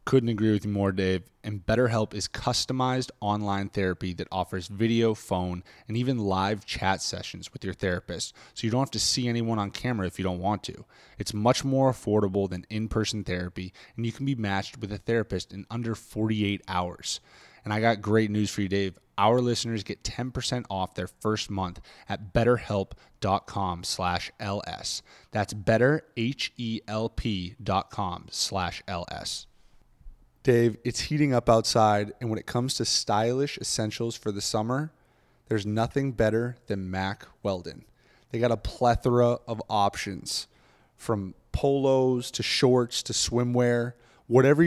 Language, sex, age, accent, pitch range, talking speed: English, male, 20-39, American, 100-125 Hz, 155 wpm